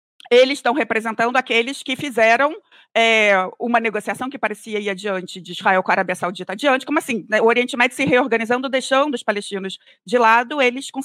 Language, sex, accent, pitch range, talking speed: Portuguese, female, Brazilian, 195-250 Hz, 185 wpm